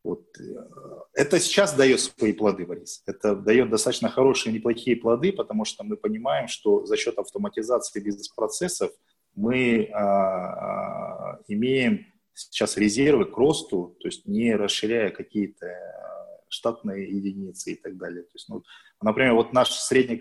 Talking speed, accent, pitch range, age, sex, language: 140 wpm, native, 105-145 Hz, 20-39, male, Russian